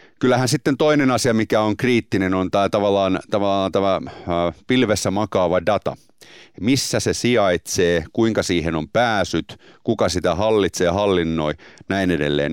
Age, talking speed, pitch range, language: 30-49, 135 wpm, 90-115 Hz, Finnish